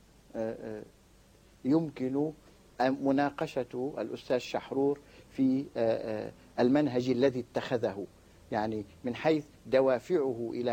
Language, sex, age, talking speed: Arabic, male, 50-69, 75 wpm